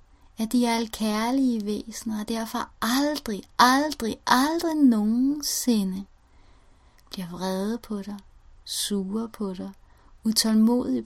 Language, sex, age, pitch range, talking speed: Danish, female, 30-49, 200-245 Hz, 110 wpm